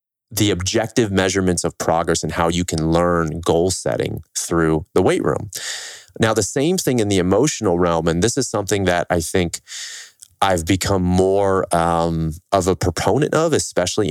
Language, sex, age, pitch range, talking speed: English, male, 30-49, 85-105 Hz, 170 wpm